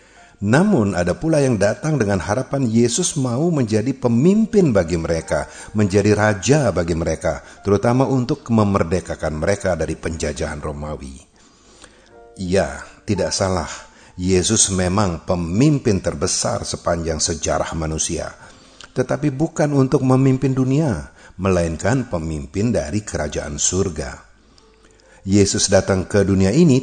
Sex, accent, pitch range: male, native, 80-105 Hz